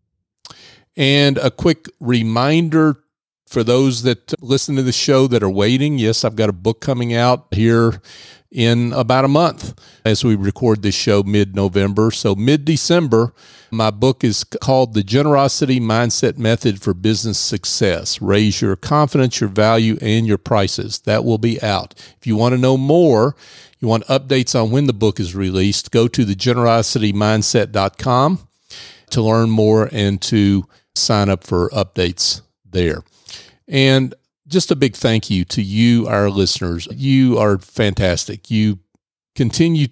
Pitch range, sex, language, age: 105-130 Hz, male, English, 40-59